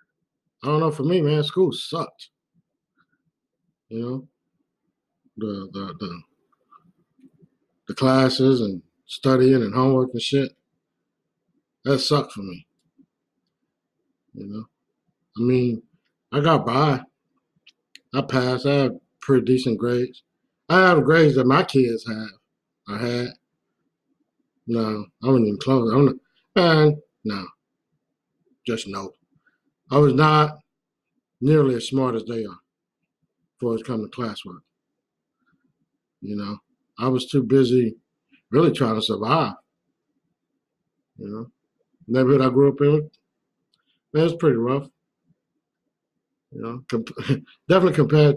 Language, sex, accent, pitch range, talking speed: English, male, American, 115-150 Hz, 125 wpm